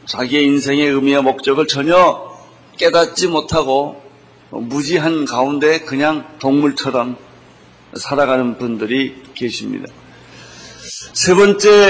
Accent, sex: native, male